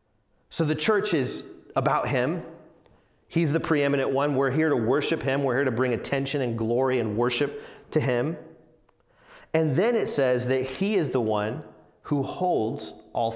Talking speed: 170 wpm